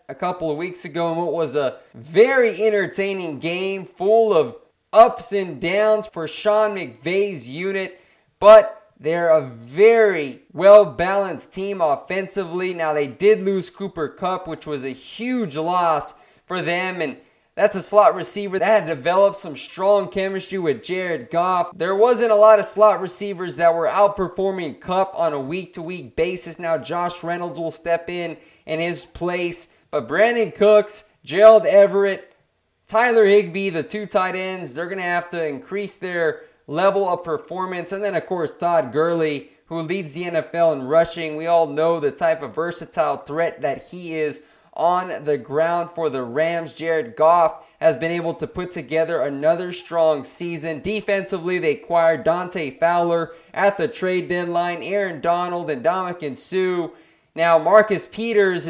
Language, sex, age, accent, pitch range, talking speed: English, male, 20-39, American, 165-200 Hz, 160 wpm